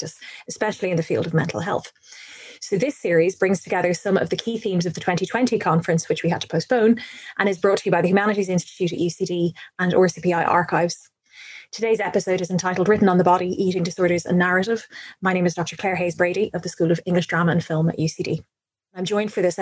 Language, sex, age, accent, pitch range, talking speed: English, female, 20-39, Irish, 175-205 Hz, 220 wpm